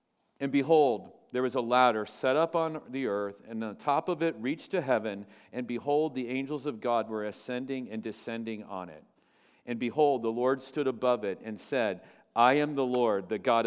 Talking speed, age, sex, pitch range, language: 200 wpm, 50-69, male, 115-140 Hz, English